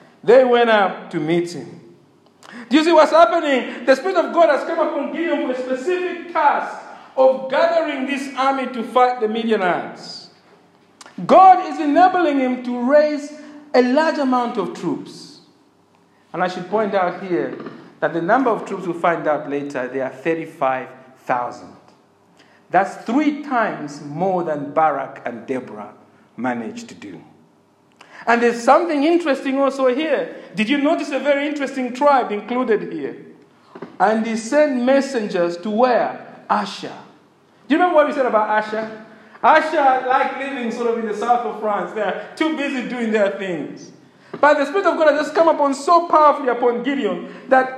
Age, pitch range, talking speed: 50-69, 190-295 Hz, 165 wpm